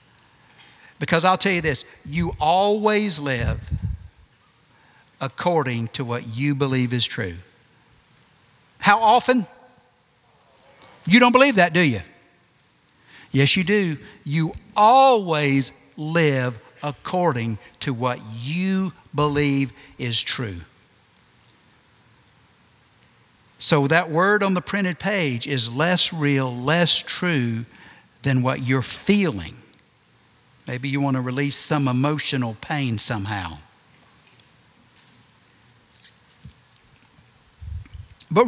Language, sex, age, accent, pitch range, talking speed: English, male, 60-79, American, 120-175 Hz, 95 wpm